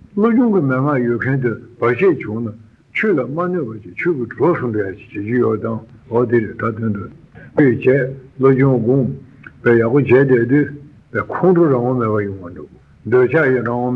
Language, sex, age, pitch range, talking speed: Italian, male, 60-79, 115-150 Hz, 75 wpm